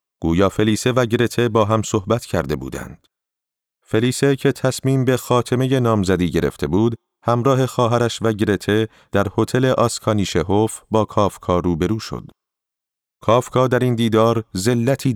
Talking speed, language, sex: 130 wpm, Persian, male